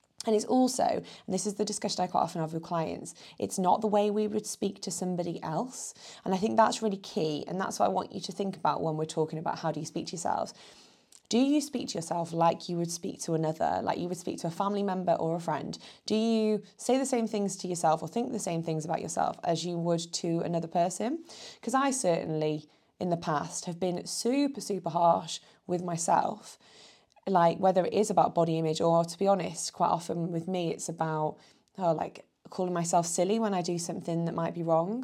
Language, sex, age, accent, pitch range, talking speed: English, female, 20-39, British, 165-200 Hz, 230 wpm